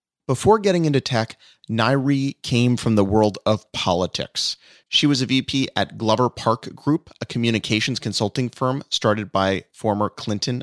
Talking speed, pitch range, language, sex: 150 wpm, 105-140 Hz, English, male